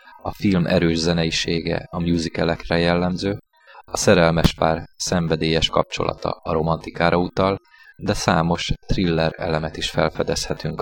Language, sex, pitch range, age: Hungarian, male, 80-95 Hz, 20-39